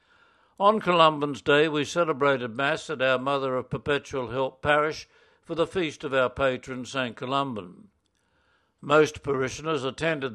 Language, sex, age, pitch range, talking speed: English, male, 60-79, 130-160 Hz, 140 wpm